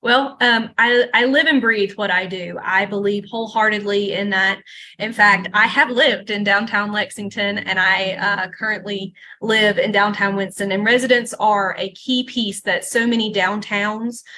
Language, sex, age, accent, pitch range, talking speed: English, female, 20-39, American, 200-230 Hz, 170 wpm